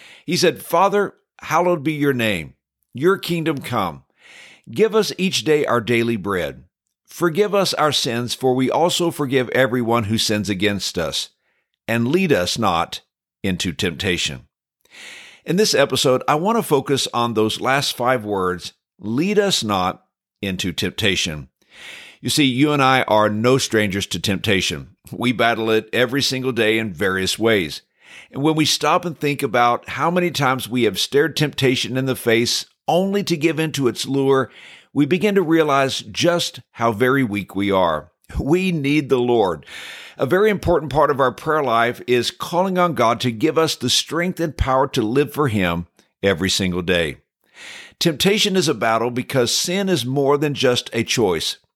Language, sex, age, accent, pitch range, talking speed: English, male, 50-69, American, 110-160 Hz, 170 wpm